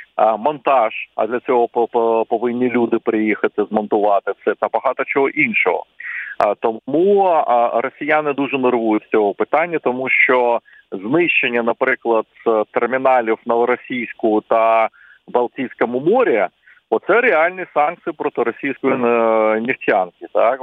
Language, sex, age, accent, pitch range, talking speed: Ukrainian, male, 40-59, native, 110-130 Hz, 110 wpm